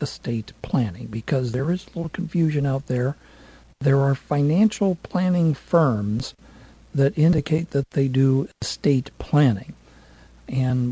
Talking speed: 125 wpm